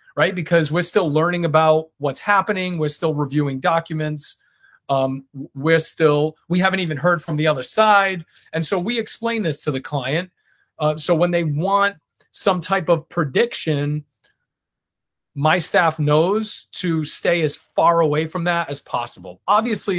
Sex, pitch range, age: male, 145-175 Hz, 30-49